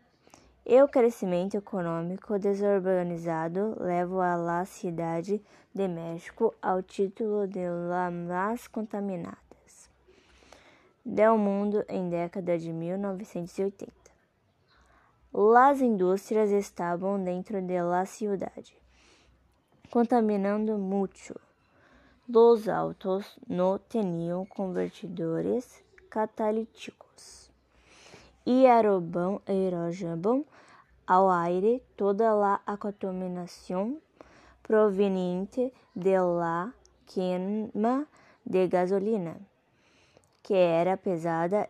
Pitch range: 180-215 Hz